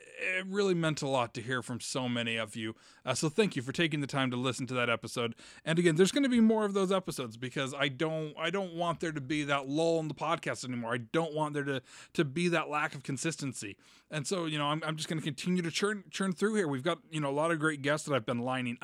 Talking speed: 285 wpm